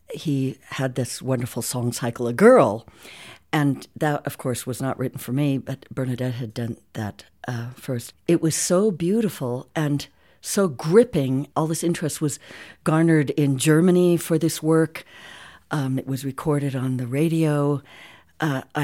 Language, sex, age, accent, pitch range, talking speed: English, female, 60-79, American, 130-165 Hz, 155 wpm